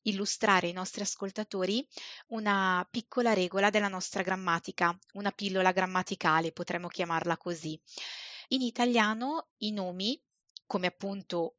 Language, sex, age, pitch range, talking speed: Italian, female, 20-39, 180-215 Hz, 115 wpm